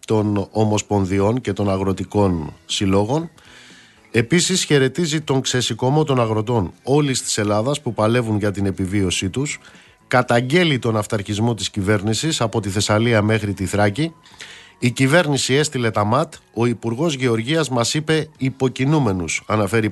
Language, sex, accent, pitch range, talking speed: Greek, male, native, 105-140 Hz, 135 wpm